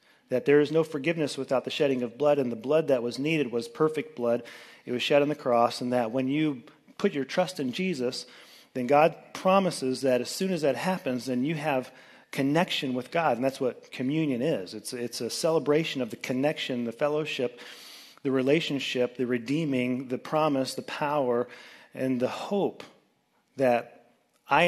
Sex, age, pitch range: male, 40-59, 125-150 Hz